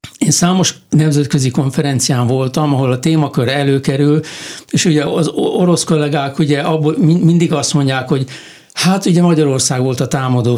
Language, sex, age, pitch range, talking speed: Hungarian, male, 60-79, 140-165 Hz, 140 wpm